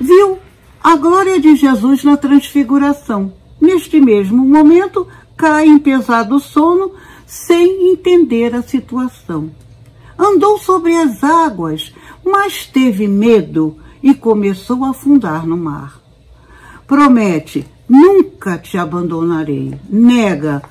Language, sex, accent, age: Portuguese, female, Brazilian, 60-79